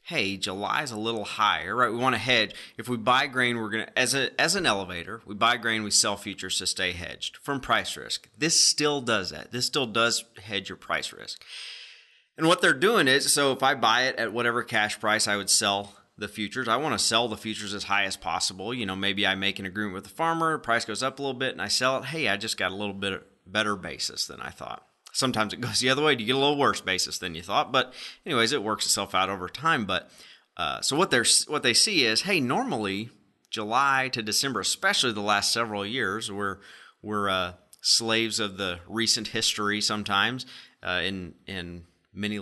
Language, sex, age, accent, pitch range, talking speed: English, male, 30-49, American, 100-125 Hz, 230 wpm